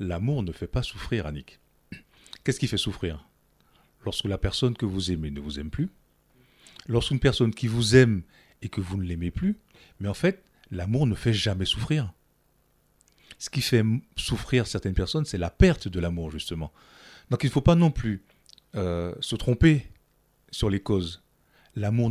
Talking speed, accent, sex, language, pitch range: 180 wpm, French, male, French, 95-125 Hz